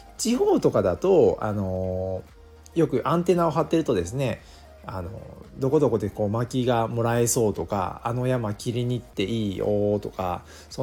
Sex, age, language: male, 40-59, Japanese